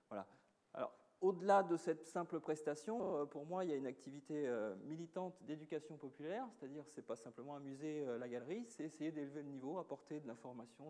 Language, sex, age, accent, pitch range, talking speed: French, male, 40-59, French, 125-170 Hz, 185 wpm